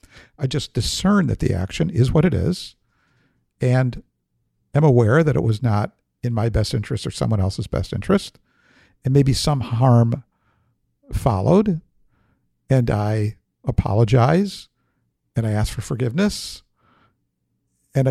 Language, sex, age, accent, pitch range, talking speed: English, male, 60-79, American, 115-150 Hz, 135 wpm